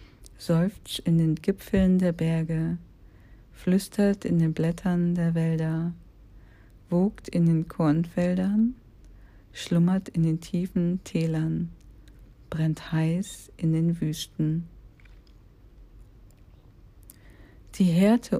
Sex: female